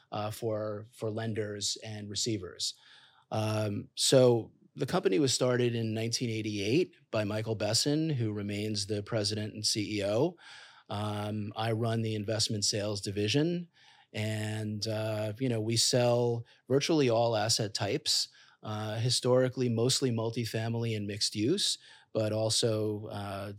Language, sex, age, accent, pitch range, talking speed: English, male, 30-49, American, 105-125 Hz, 125 wpm